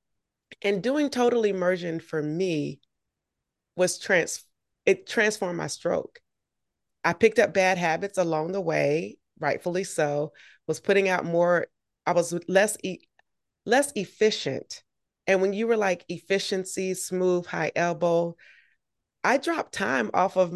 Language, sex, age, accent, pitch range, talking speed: English, female, 30-49, American, 175-245 Hz, 130 wpm